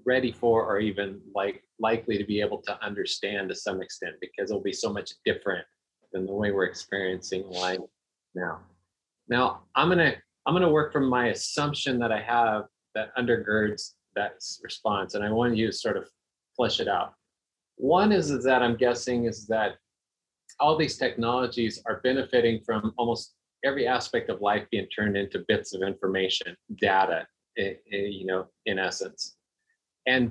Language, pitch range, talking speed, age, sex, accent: English, 105-125 Hz, 170 wpm, 30-49, male, American